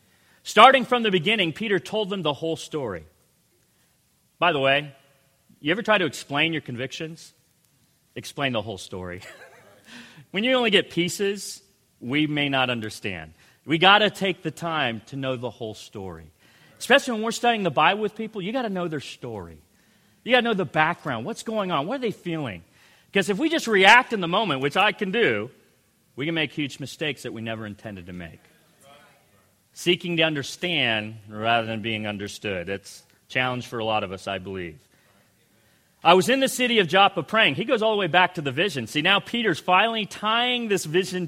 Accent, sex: American, male